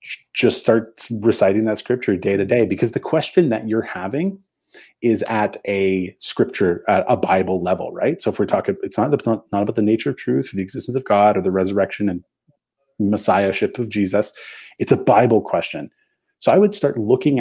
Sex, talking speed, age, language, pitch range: male, 195 wpm, 30-49, English, 95-125 Hz